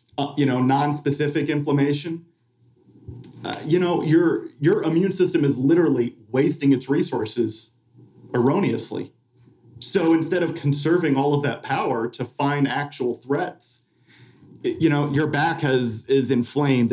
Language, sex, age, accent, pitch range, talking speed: English, male, 40-59, American, 120-145 Hz, 135 wpm